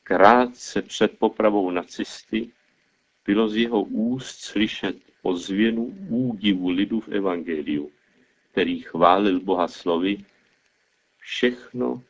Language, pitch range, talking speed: Czech, 85-110 Hz, 100 wpm